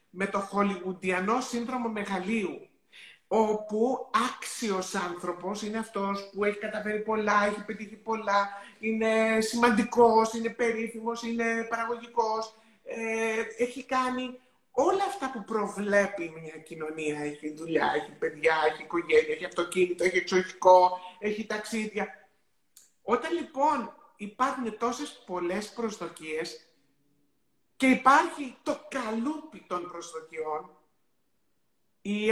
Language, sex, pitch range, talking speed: Greek, male, 185-250 Hz, 105 wpm